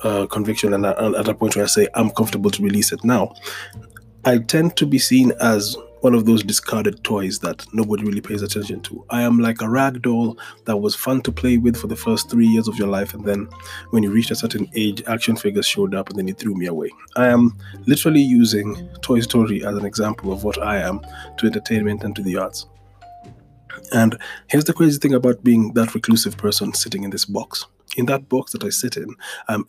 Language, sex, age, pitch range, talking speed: English, male, 20-39, 105-135 Hz, 225 wpm